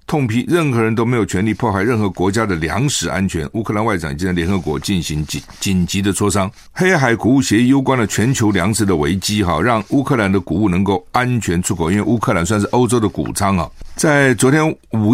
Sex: male